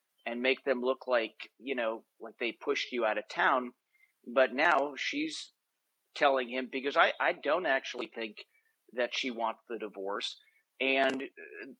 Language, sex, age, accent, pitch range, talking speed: English, male, 40-59, American, 120-140 Hz, 160 wpm